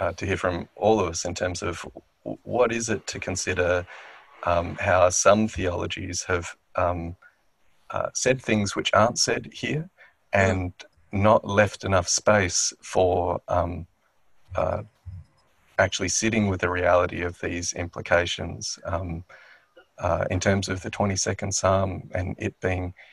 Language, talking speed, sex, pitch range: English, 145 wpm, male, 90-105 Hz